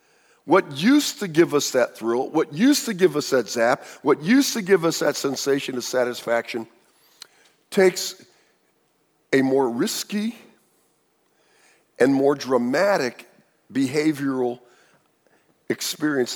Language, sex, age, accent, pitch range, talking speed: English, male, 50-69, American, 130-185 Hz, 115 wpm